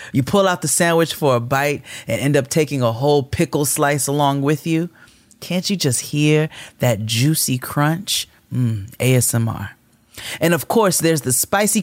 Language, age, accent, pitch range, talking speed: English, 30-49, American, 115-160 Hz, 170 wpm